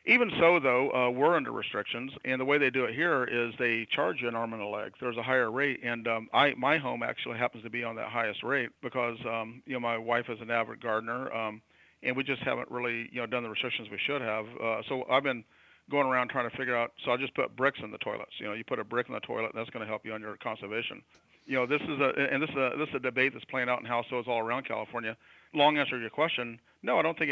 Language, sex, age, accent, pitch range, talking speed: English, male, 40-59, American, 115-130 Hz, 285 wpm